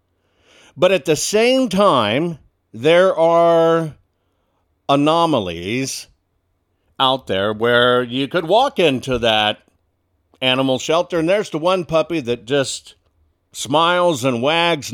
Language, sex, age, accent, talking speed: English, male, 60-79, American, 115 wpm